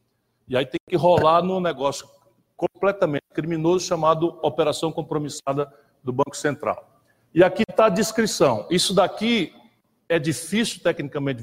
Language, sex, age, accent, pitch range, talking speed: Portuguese, male, 60-79, Brazilian, 135-185 Hz, 130 wpm